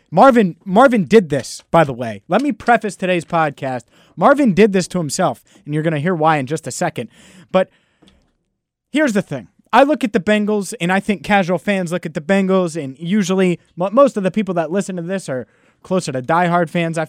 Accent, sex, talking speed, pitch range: American, male, 215 wpm, 130-185 Hz